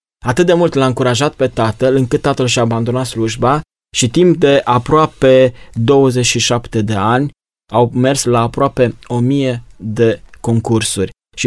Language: Romanian